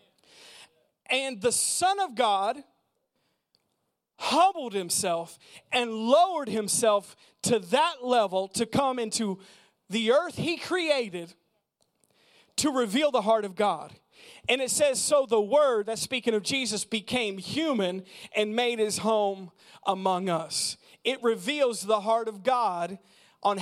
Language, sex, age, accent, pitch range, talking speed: English, male, 40-59, American, 195-250 Hz, 130 wpm